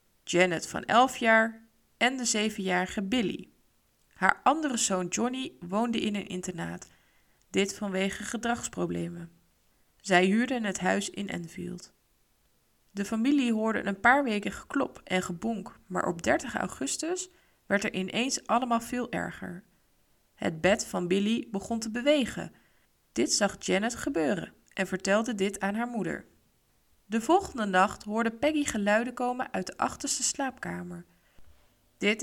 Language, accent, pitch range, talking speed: Dutch, Dutch, 180-235 Hz, 135 wpm